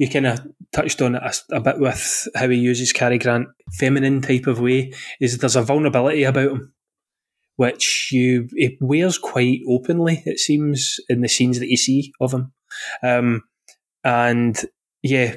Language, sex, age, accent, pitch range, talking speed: English, male, 20-39, British, 125-145 Hz, 170 wpm